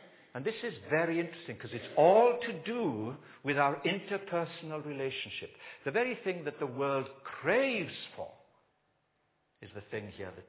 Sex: male